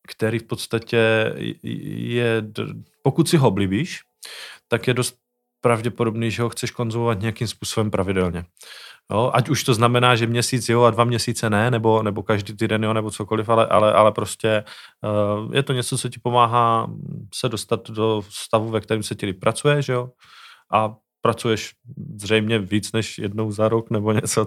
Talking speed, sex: 165 wpm, male